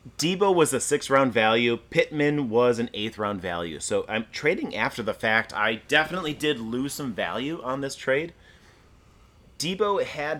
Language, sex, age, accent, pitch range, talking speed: English, male, 30-49, American, 105-140 Hz, 165 wpm